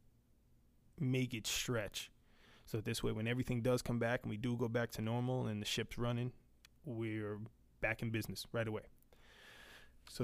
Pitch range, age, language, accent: 110-125 Hz, 20-39, English, American